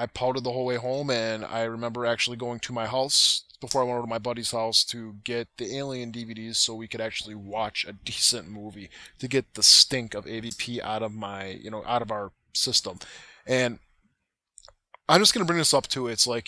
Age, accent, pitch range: 20-39, American, 115-140 Hz